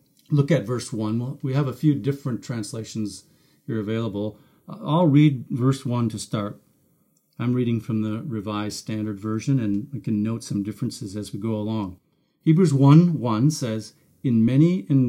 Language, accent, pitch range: English, American, 110-150 Hz